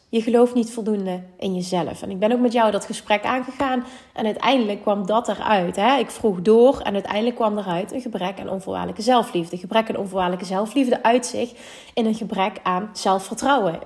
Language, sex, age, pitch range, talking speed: Dutch, female, 30-49, 205-255 Hz, 195 wpm